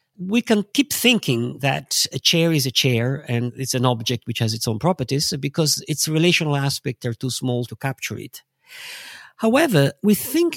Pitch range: 130-185 Hz